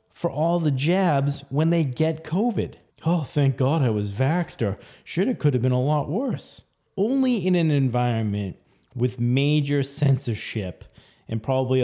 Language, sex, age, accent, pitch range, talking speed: English, male, 30-49, American, 120-155 Hz, 160 wpm